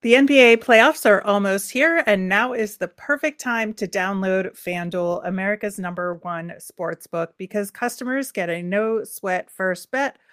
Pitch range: 180-225 Hz